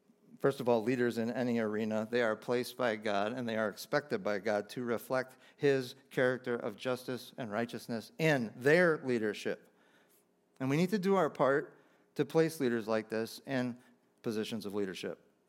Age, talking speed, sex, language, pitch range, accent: 40-59, 175 wpm, male, English, 115-140 Hz, American